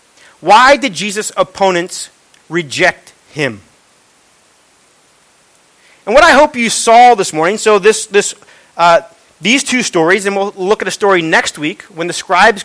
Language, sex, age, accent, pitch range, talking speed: English, male, 40-59, American, 160-215 Hz, 150 wpm